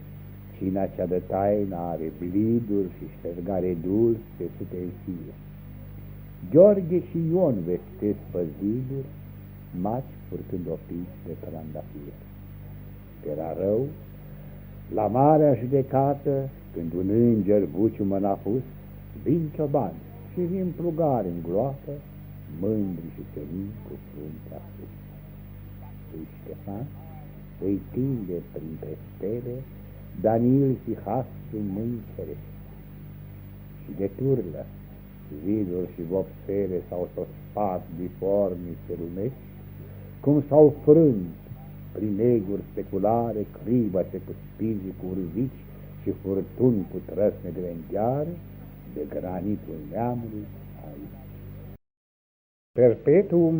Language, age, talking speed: Romanian, 60-79, 95 wpm